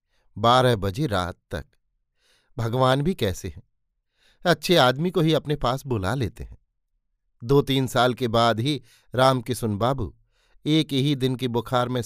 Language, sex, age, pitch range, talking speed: Hindi, male, 50-69, 115-145 Hz, 155 wpm